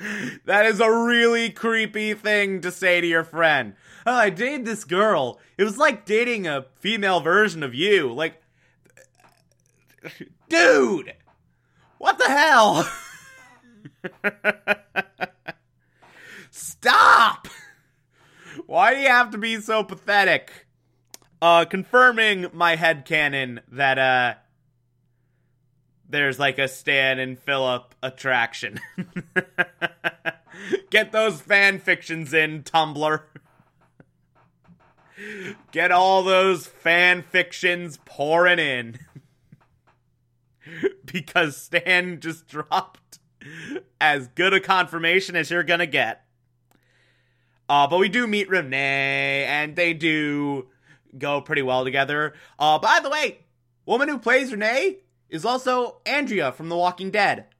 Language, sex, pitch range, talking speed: English, male, 135-205 Hz, 110 wpm